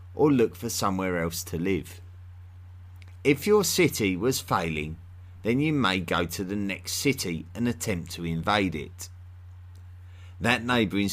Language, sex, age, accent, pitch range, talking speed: English, male, 30-49, British, 90-110 Hz, 145 wpm